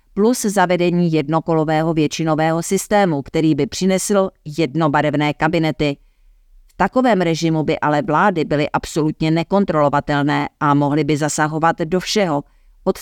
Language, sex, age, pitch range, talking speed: Czech, female, 50-69, 150-170 Hz, 120 wpm